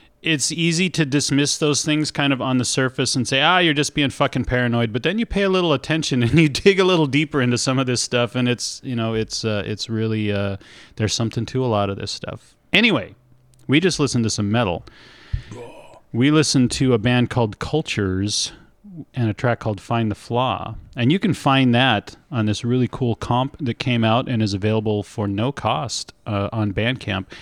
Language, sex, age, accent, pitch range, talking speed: English, male, 40-59, American, 110-145 Hz, 210 wpm